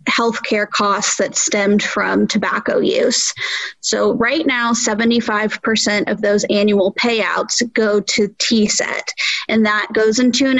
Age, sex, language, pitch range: 20-39, female, English, 205-250 Hz